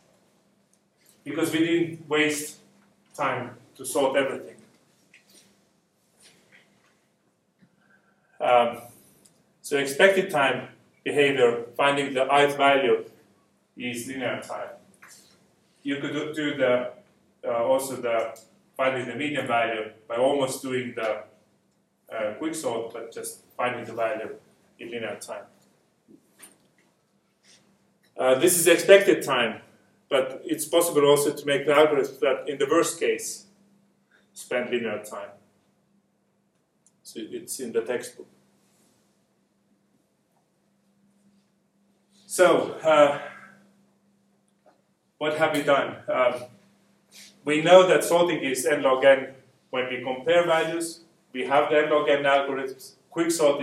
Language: English